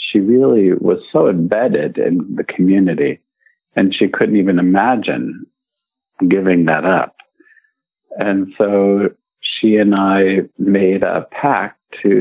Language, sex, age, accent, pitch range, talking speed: English, male, 50-69, American, 90-105 Hz, 125 wpm